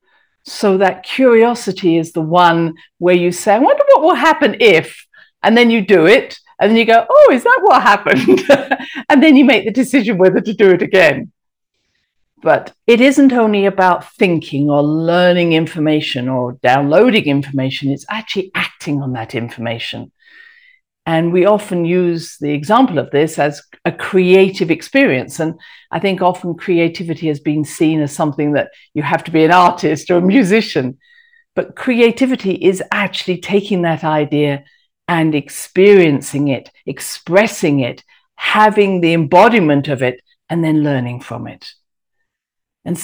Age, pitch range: 50-69, 150-220 Hz